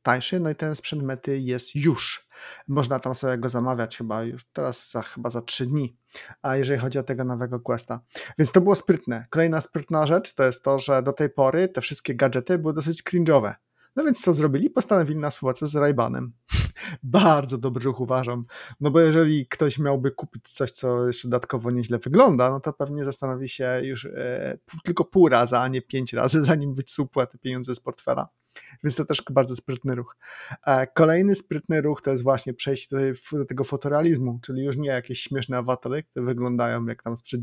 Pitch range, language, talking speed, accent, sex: 125-155 Hz, Polish, 190 wpm, native, male